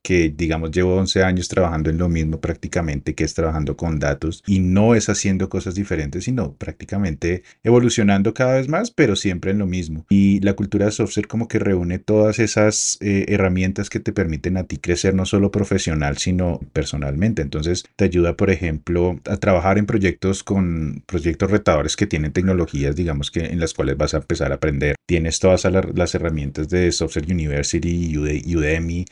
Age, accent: 30-49, Colombian